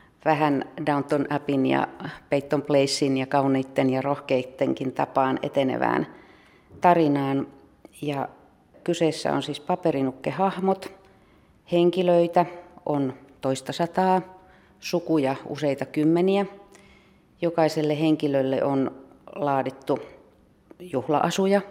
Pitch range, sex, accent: 135-170 Hz, female, native